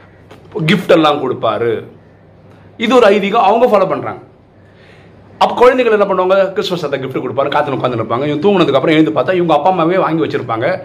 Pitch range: 125-195 Hz